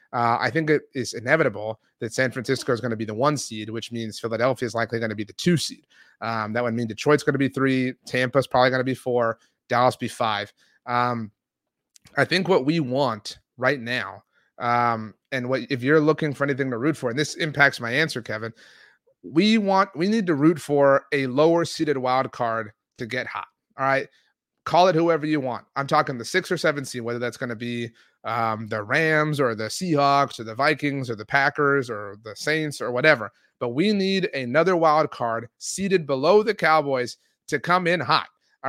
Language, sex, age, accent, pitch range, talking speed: English, male, 30-49, American, 120-160 Hz, 210 wpm